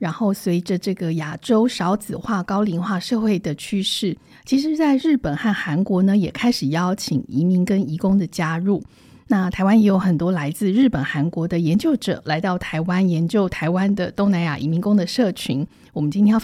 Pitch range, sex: 170-220 Hz, female